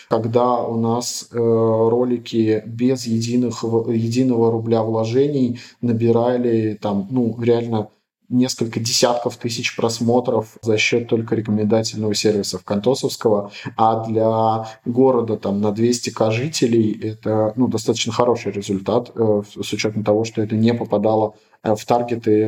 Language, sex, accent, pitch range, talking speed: Russian, male, native, 115-130 Hz, 120 wpm